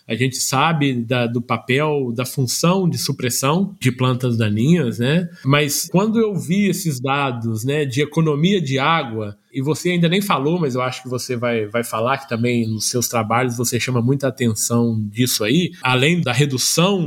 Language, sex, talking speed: Portuguese, male, 180 wpm